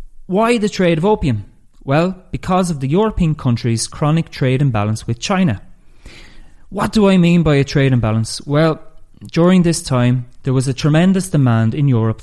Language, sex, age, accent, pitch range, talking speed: English, male, 30-49, Irish, 115-165 Hz, 170 wpm